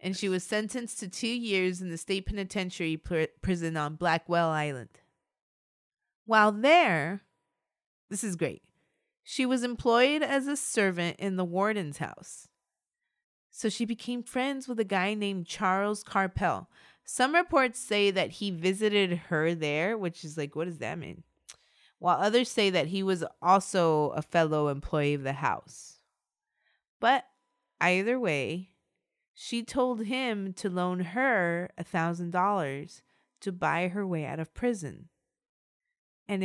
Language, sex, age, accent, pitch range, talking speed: English, female, 20-39, American, 170-220 Hz, 140 wpm